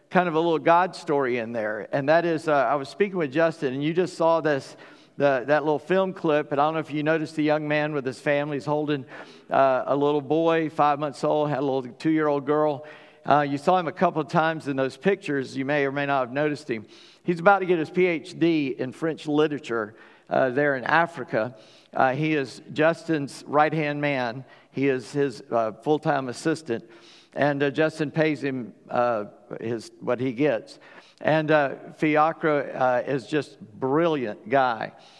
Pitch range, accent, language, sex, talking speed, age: 140-160 Hz, American, English, male, 205 wpm, 50-69